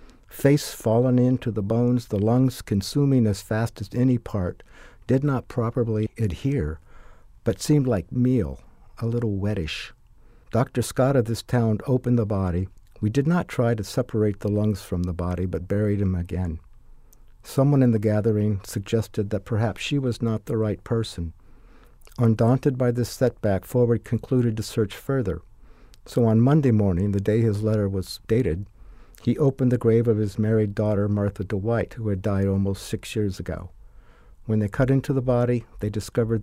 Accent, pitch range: American, 100-120 Hz